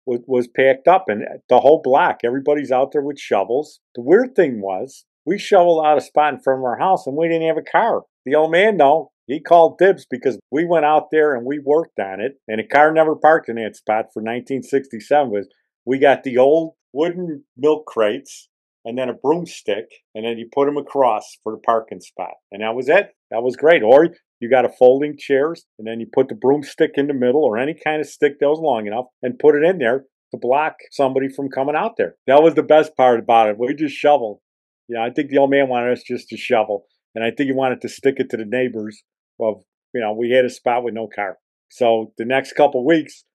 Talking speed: 240 wpm